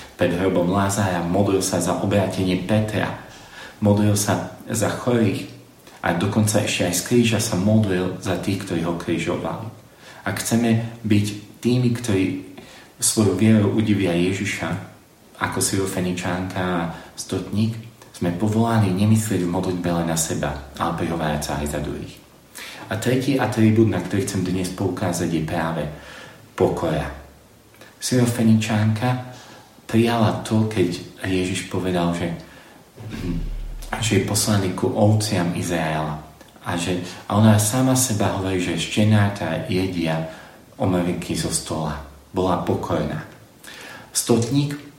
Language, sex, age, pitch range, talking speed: Slovak, male, 40-59, 90-110 Hz, 120 wpm